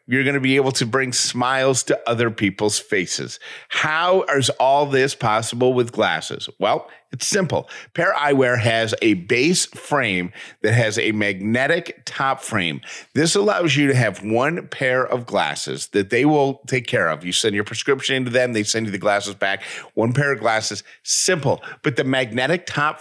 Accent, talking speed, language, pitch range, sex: American, 180 wpm, English, 110-140 Hz, male